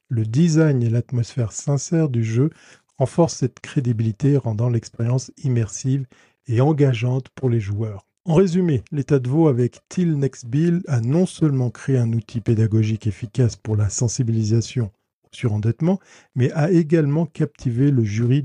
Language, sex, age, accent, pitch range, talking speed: French, male, 50-69, French, 120-150 Hz, 150 wpm